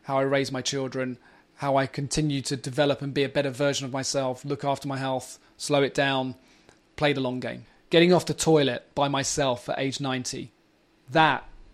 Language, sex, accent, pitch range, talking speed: English, male, British, 140-165 Hz, 195 wpm